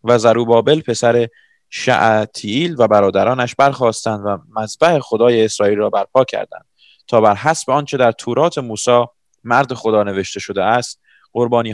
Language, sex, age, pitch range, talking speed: English, male, 20-39, 110-130 Hz, 140 wpm